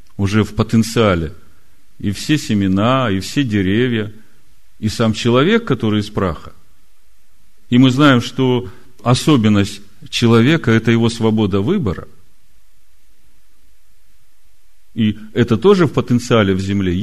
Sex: male